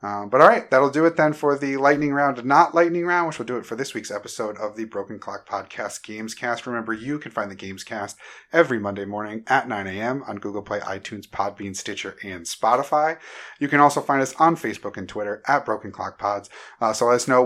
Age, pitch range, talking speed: 30-49, 110-140 Hz, 235 wpm